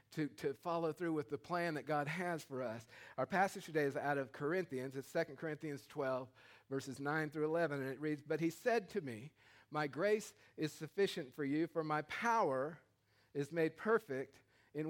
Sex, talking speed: male, 195 wpm